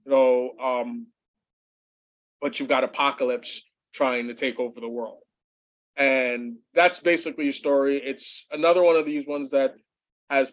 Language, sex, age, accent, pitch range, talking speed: English, male, 20-39, American, 120-145 Hz, 150 wpm